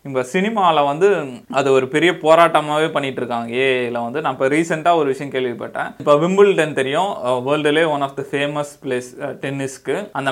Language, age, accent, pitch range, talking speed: Tamil, 20-39, native, 130-150 Hz, 155 wpm